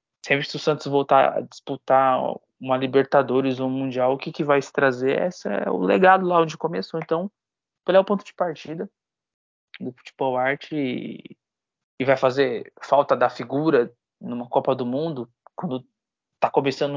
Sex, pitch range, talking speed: male, 125-145 Hz, 165 wpm